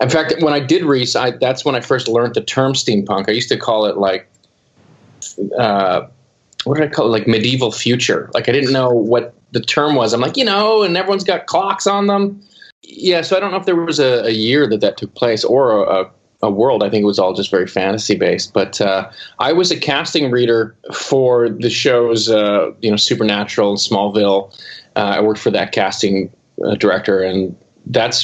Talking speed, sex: 215 wpm, male